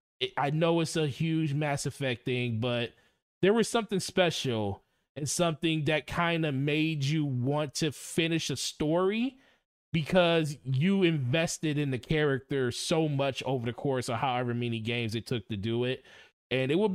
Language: English